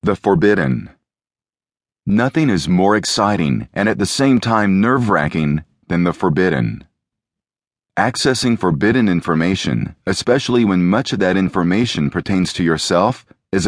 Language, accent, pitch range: English, American, 90-115 Hz